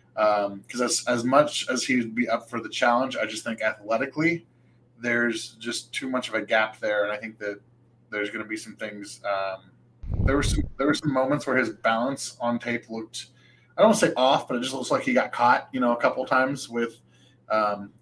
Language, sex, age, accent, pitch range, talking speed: English, male, 20-39, American, 105-130 Hz, 235 wpm